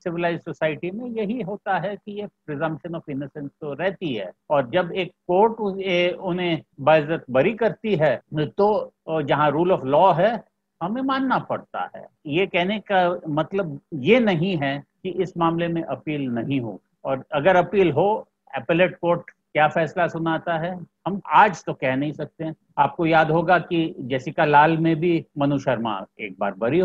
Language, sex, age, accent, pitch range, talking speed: Hindi, male, 50-69, native, 150-185 Hz, 130 wpm